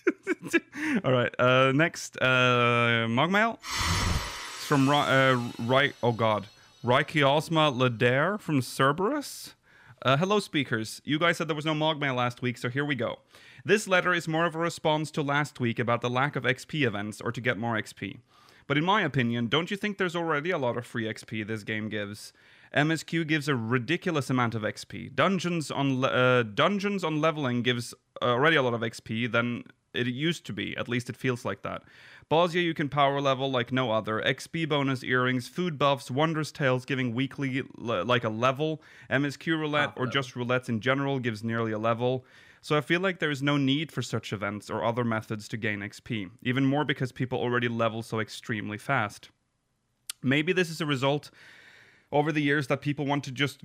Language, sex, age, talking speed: English, male, 30-49, 195 wpm